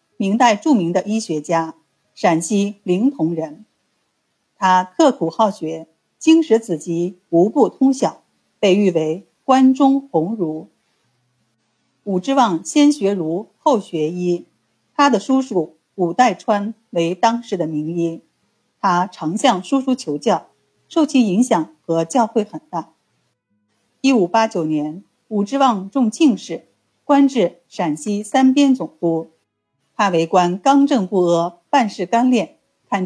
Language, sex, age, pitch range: Chinese, female, 50-69, 170-240 Hz